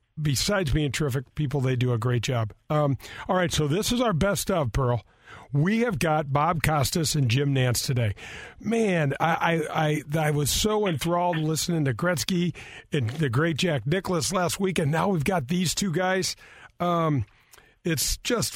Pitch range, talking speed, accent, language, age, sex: 135-165 Hz, 180 wpm, American, English, 50-69, male